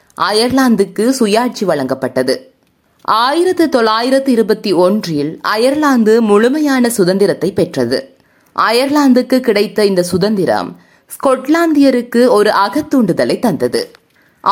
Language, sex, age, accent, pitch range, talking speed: Tamil, female, 20-39, native, 200-270 Hz, 80 wpm